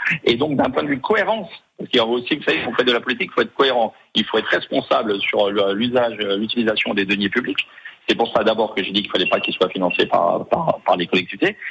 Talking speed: 270 wpm